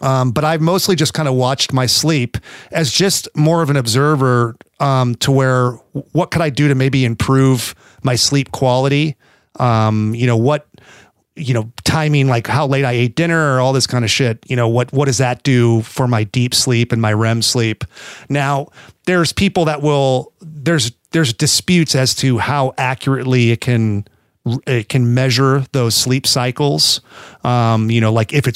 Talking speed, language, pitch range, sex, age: 195 wpm, English, 115-140 Hz, male, 40-59